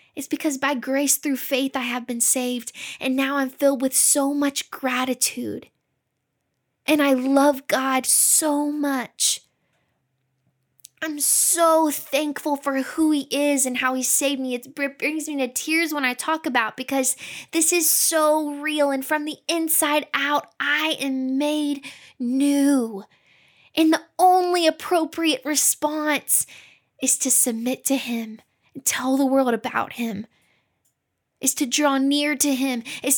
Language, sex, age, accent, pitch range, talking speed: English, female, 10-29, American, 255-300 Hz, 145 wpm